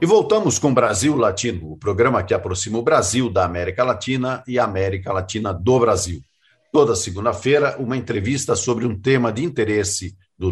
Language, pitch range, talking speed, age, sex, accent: Portuguese, 105-140 Hz, 170 wpm, 50-69, male, Brazilian